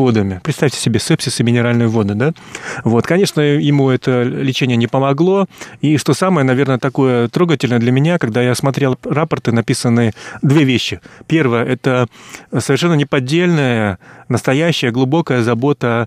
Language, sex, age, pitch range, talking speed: Russian, male, 30-49, 120-145 Hz, 125 wpm